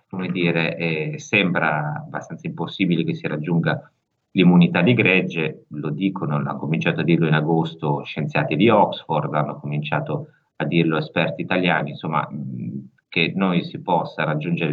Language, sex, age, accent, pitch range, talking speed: Italian, male, 30-49, native, 75-90 Hz, 145 wpm